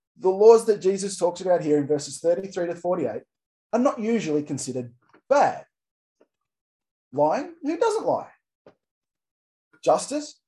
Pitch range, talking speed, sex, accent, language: 160-230 Hz, 125 wpm, male, Australian, English